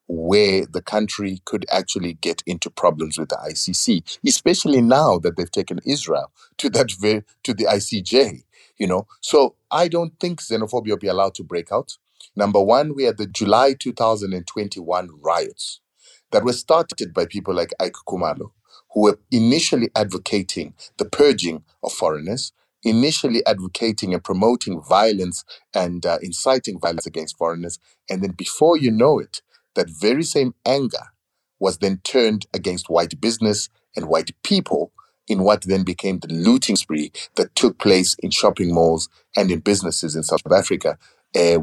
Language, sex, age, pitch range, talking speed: English, male, 30-49, 90-110 Hz, 160 wpm